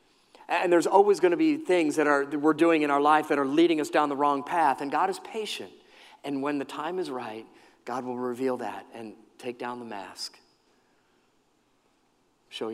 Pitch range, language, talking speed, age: 120-160 Hz, English, 205 wpm, 40-59